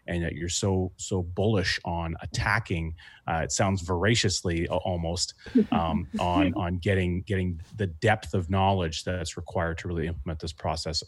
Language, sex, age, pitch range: English, male, 30-49, 85-100 Hz